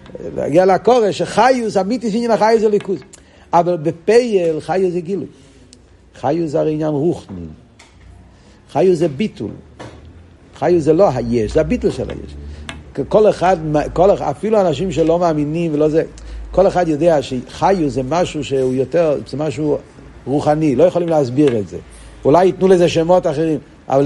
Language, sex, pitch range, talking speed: Hebrew, male, 130-200 Hz, 145 wpm